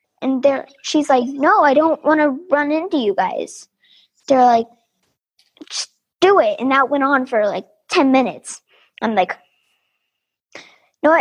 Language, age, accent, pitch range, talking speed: English, 10-29, American, 240-310 Hz, 165 wpm